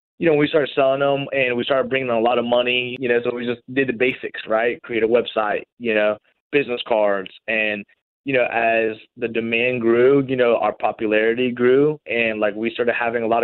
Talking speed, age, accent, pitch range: 220 wpm, 20-39, American, 110-125 Hz